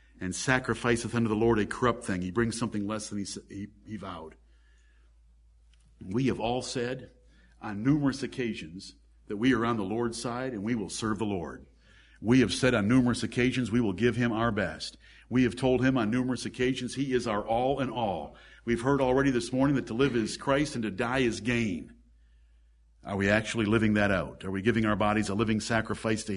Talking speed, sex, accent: 210 wpm, male, American